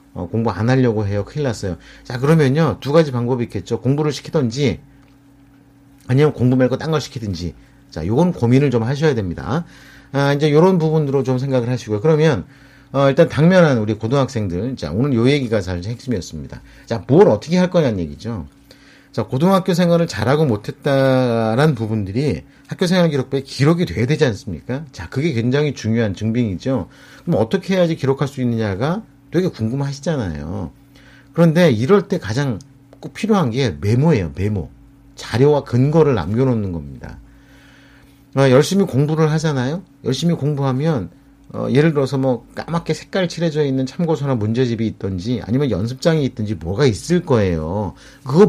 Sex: male